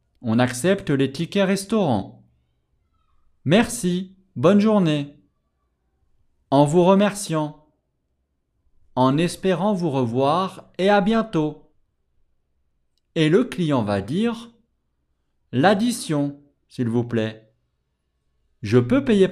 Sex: male